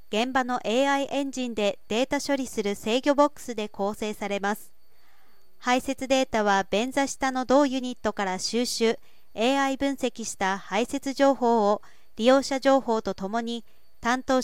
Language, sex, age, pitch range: Japanese, female, 40-59, 215-265 Hz